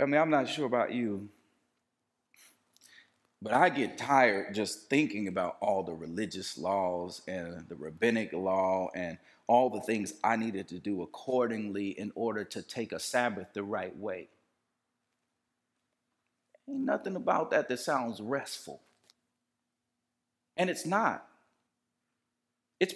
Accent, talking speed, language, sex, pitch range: American, 135 wpm, English, male, 115-175 Hz